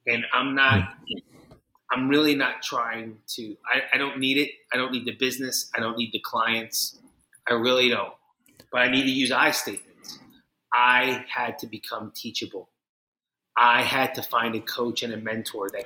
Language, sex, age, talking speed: English, male, 30-49, 180 wpm